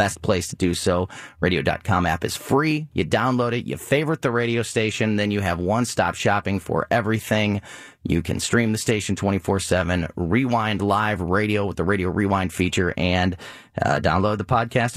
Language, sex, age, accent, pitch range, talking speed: English, male, 30-49, American, 100-130 Hz, 170 wpm